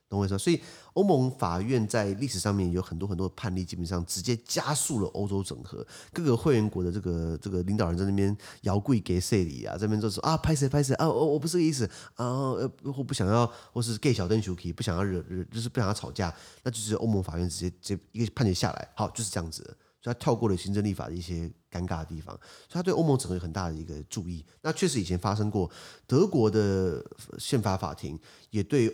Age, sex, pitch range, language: 30-49, male, 90-125 Hz, Chinese